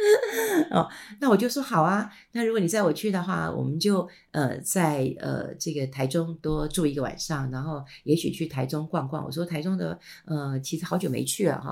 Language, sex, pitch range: Chinese, female, 155-205 Hz